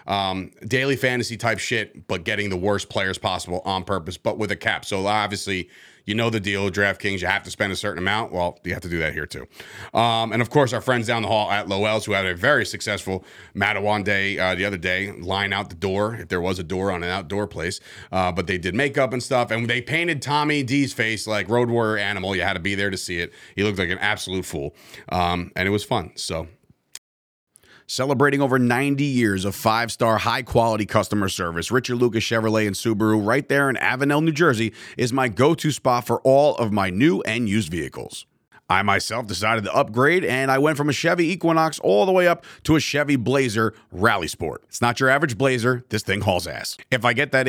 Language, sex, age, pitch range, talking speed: English, male, 30-49, 100-130 Hz, 225 wpm